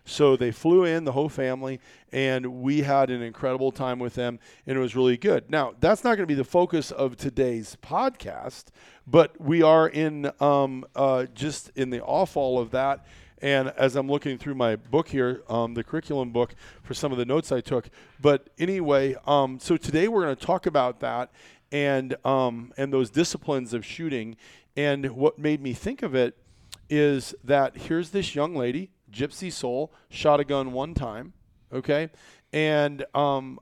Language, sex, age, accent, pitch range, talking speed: English, male, 40-59, American, 125-145 Hz, 185 wpm